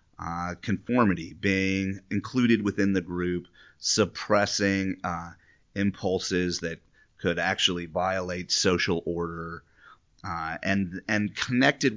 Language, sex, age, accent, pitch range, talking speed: English, male, 30-49, American, 90-105 Hz, 100 wpm